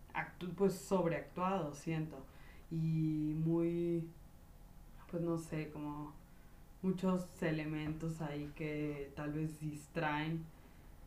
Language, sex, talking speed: Spanish, female, 85 wpm